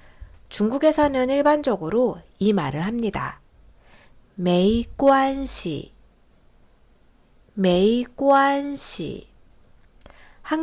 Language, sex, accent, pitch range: Korean, female, native, 180-275 Hz